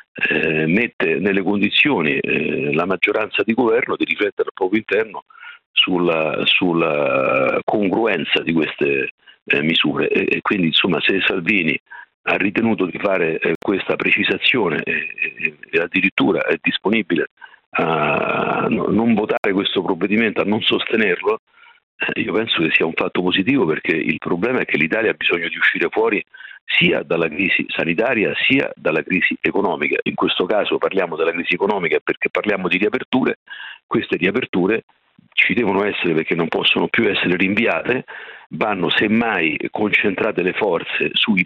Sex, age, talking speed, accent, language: male, 50-69, 145 wpm, native, Italian